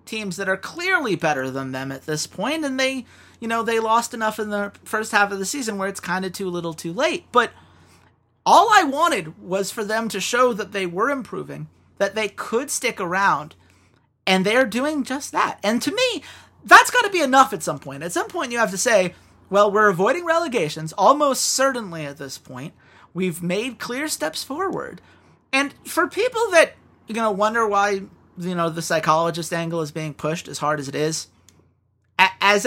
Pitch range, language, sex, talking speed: 165-260 Hz, English, male, 195 wpm